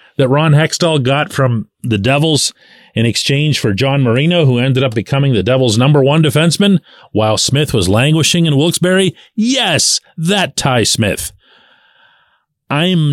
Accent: American